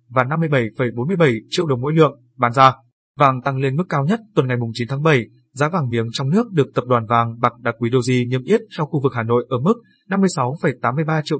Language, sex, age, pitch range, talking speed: Vietnamese, male, 20-39, 120-145 Hz, 225 wpm